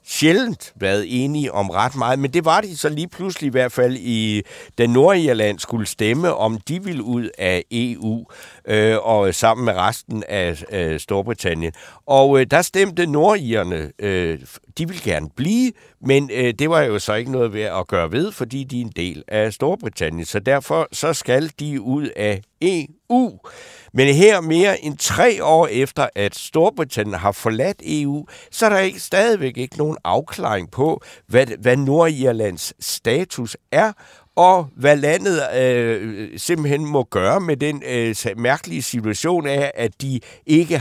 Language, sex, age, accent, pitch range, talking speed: Danish, male, 60-79, native, 105-150 Hz, 155 wpm